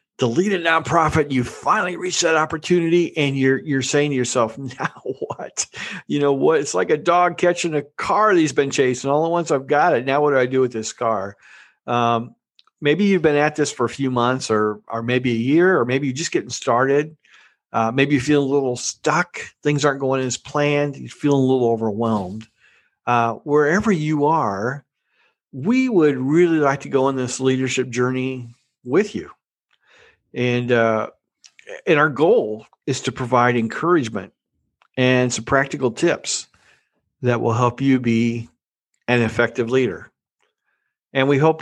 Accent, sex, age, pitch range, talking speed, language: American, male, 50-69, 120-150 Hz, 175 wpm, English